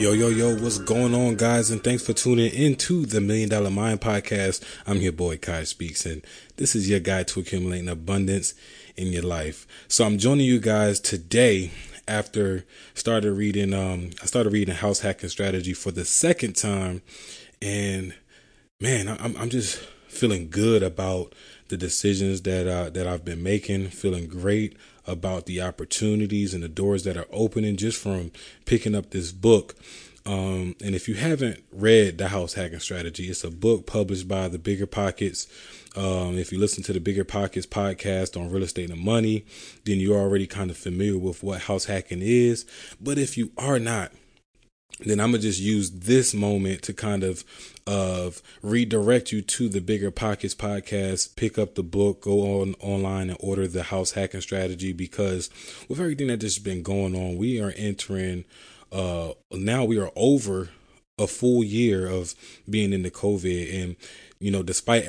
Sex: male